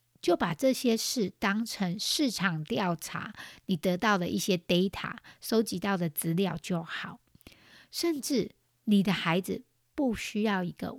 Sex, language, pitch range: female, Chinese, 170-225 Hz